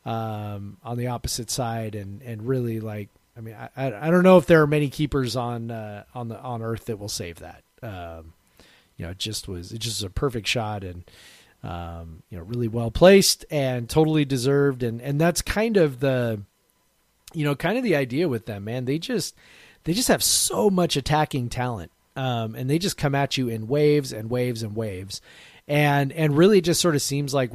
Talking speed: 210 wpm